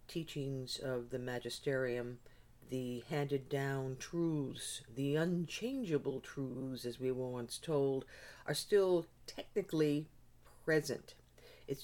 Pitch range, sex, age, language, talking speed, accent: 125-150 Hz, female, 50-69, English, 105 wpm, American